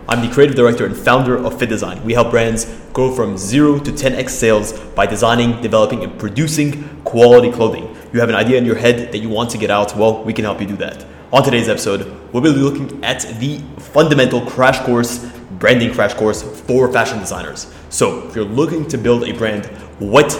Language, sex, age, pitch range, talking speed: English, male, 20-39, 110-135 Hz, 210 wpm